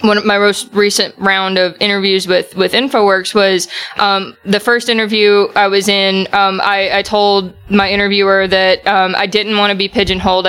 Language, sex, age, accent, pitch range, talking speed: English, female, 20-39, American, 185-205 Hz, 190 wpm